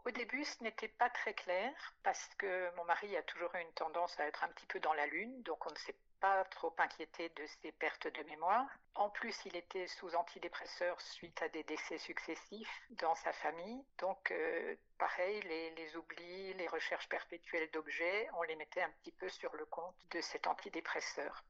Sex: female